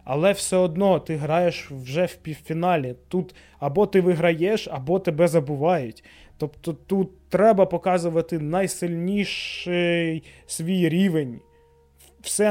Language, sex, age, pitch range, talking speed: Ukrainian, male, 20-39, 150-175 Hz, 110 wpm